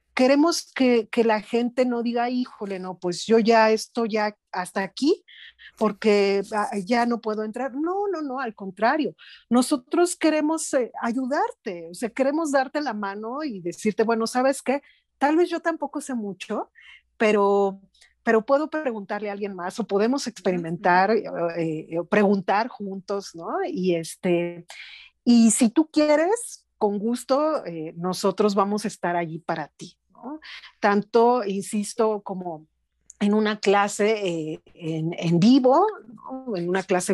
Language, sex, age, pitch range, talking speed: Spanish, female, 40-59, 195-255 Hz, 150 wpm